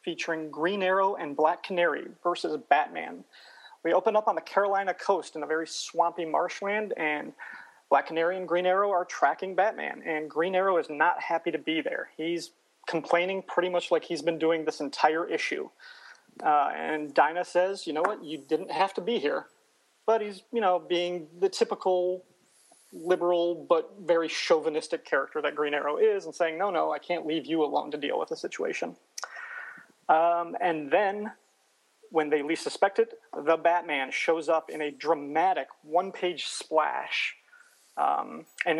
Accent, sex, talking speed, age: American, male, 170 wpm, 30-49